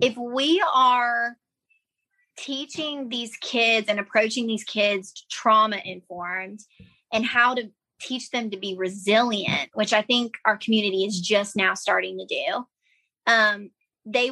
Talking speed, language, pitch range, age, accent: 140 wpm, English, 200-245 Hz, 20-39, American